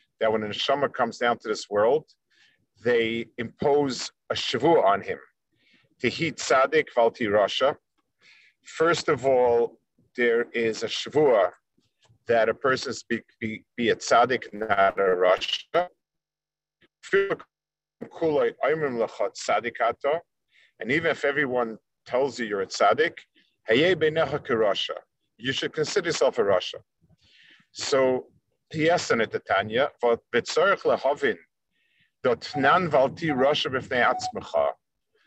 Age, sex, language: 50-69, male, English